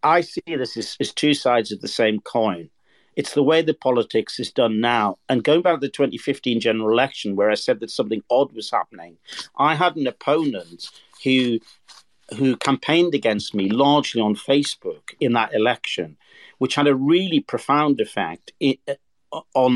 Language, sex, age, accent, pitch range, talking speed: English, male, 50-69, British, 115-150 Hz, 175 wpm